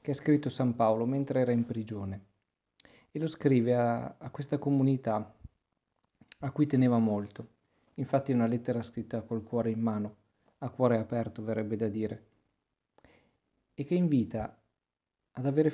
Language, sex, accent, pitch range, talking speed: Italian, male, native, 110-140 Hz, 155 wpm